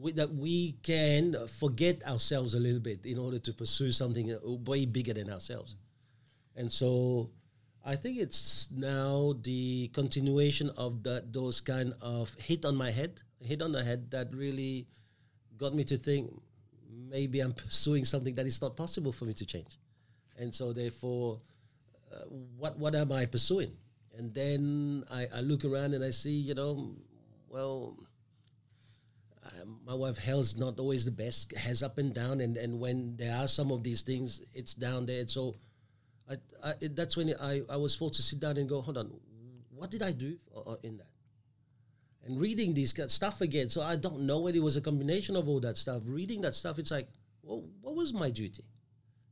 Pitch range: 120-145 Hz